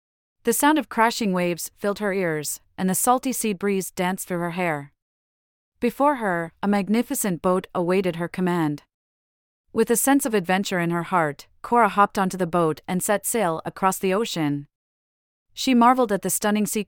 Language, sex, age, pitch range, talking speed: English, female, 30-49, 165-210 Hz, 180 wpm